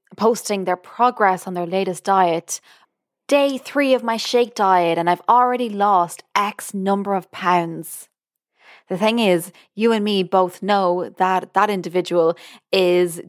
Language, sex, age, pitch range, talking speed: English, female, 20-39, 175-210 Hz, 150 wpm